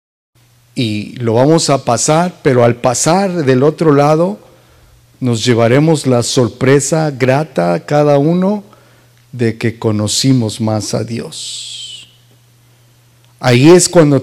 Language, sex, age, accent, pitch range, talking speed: English, male, 50-69, Mexican, 120-145 Hz, 120 wpm